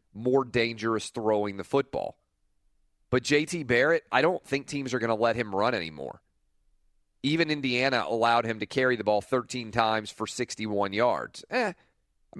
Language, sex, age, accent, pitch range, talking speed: English, male, 30-49, American, 105-130 Hz, 165 wpm